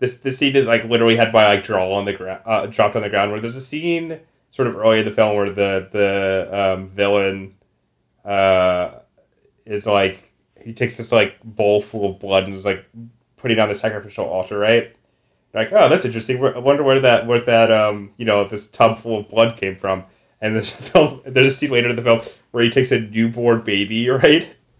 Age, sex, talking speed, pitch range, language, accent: 30-49, male, 220 wpm, 100-130 Hz, English, American